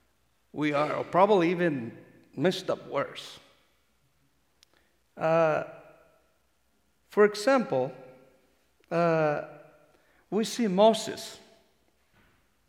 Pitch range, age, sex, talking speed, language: 160-235 Hz, 60-79, male, 65 wpm, English